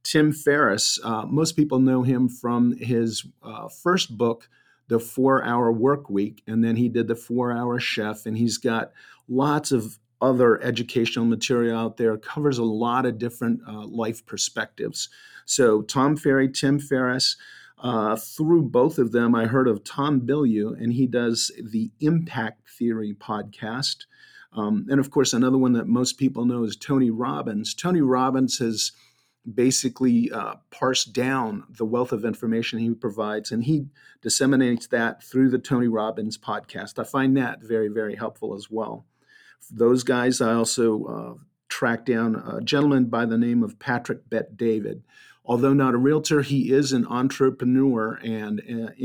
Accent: American